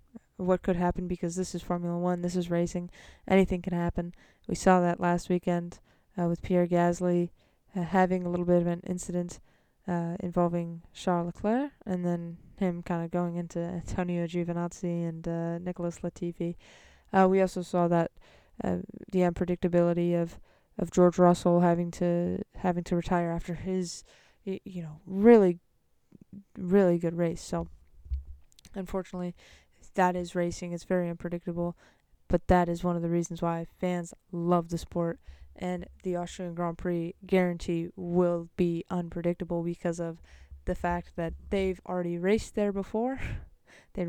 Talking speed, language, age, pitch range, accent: 155 wpm, English, 20-39, 170-185 Hz, American